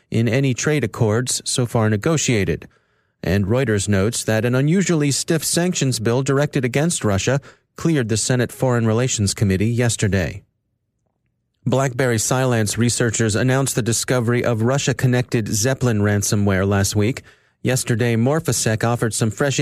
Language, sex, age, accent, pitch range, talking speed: English, male, 30-49, American, 110-135 Hz, 130 wpm